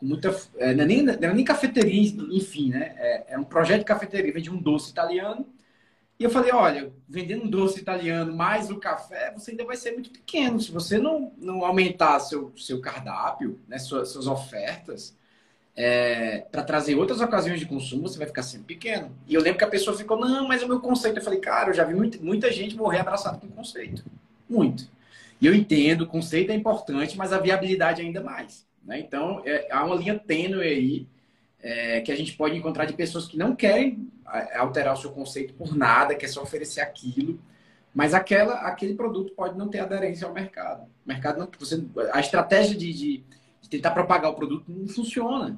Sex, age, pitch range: male, 20-39, 145-215 Hz